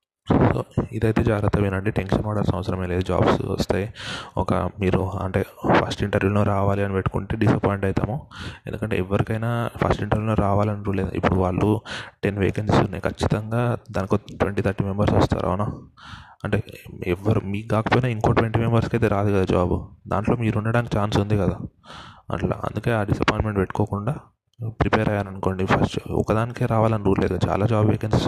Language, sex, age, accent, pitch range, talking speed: Telugu, male, 20-39, native, 95-110 Hz, 150 wpm